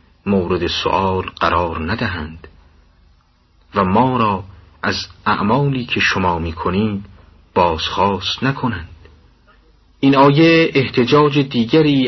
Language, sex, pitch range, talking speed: Persian, male, 80-120 Hz, 90 wpm